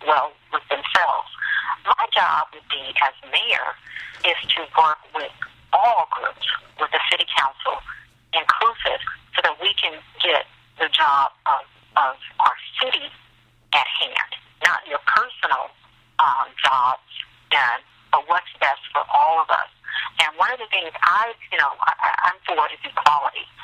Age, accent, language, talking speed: 50-69, American, English, 150 wpm